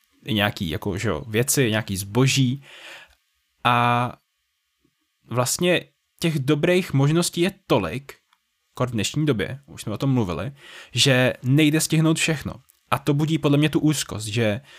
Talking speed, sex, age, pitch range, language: 130 wpm, male, 10-29, 110-130 Hz, Czech